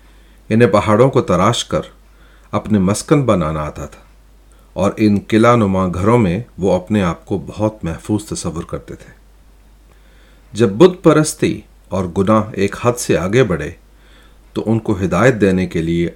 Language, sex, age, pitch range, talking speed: Urdu, male, 40-59, 90-120 Hz, 155 wpm